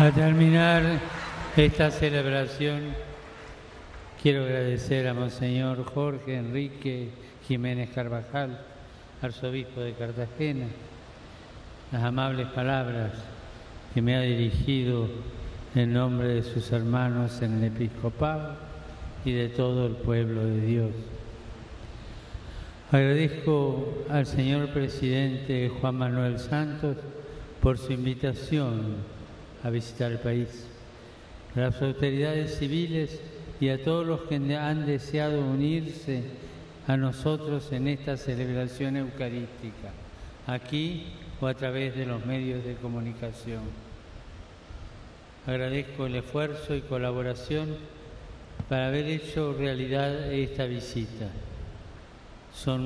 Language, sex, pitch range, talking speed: Italian, male, 120-140 Hz, 100 wpm